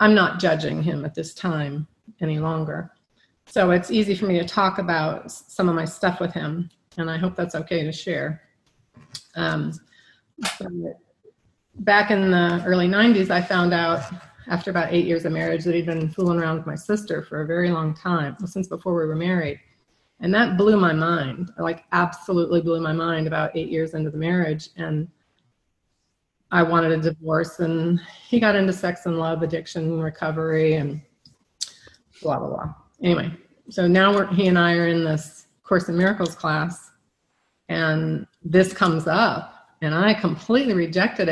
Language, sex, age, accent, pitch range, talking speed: English, female, 30-49, American, 160-185 Hz, 175 wpm